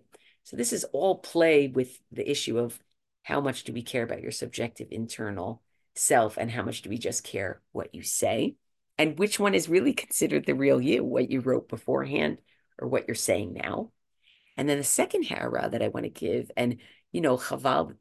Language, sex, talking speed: English, female, 205 wpm